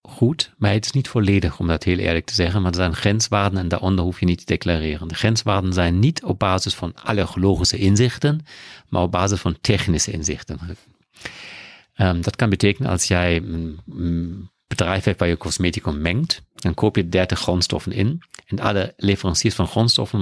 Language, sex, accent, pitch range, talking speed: Dutch, male, German, 90-110 Hz, 185 wpm